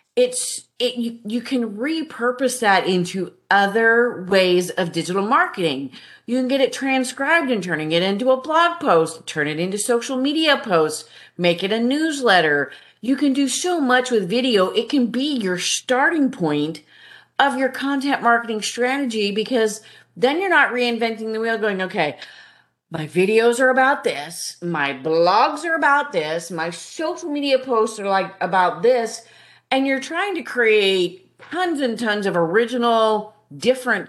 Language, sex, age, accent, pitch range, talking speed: English, female, 40-59, American, 180-265 Hz, 160 wpm